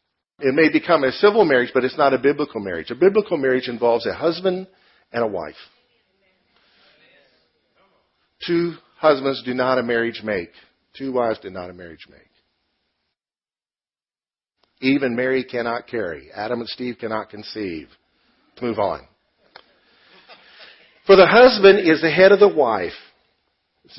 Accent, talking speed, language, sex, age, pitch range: American, 140 wpm, English, male, 50-69, 110-170 Hz